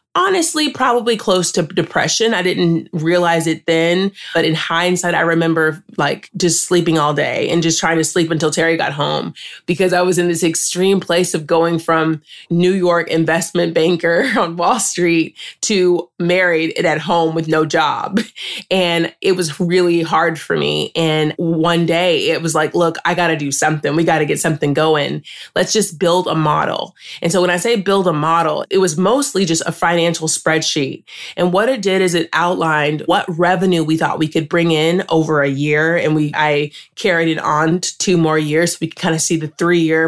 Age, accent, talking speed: 30-49, American, 200 wpm